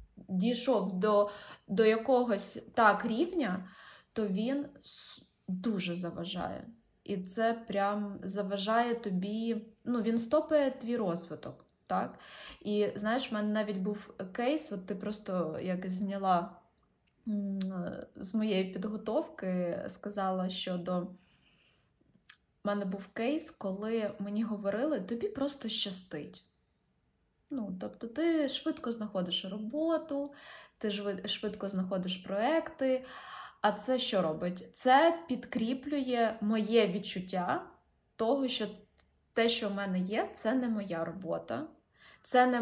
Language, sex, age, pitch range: Ukrainian, female, 20-39, 195-245 Hz